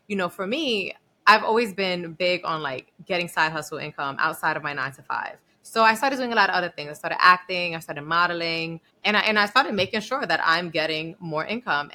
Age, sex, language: 20-39, female, English